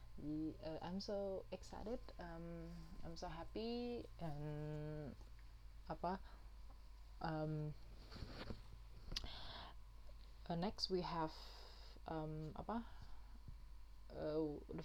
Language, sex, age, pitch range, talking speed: Indonesian, female, 20-39, 150-170 Hz, 75 wpm